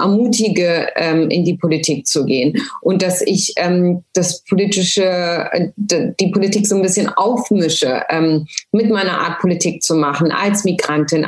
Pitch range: 175-205 Hz